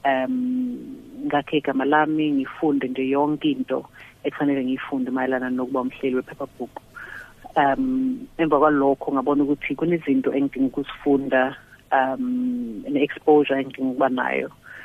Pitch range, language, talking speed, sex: 135-155 Hz, English, 120 wpm, female